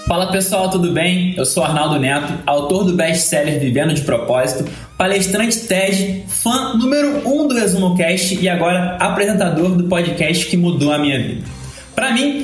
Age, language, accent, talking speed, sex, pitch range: 20-39, Portuguese, Brazilian, 160 wpm, male, 180-225 Hz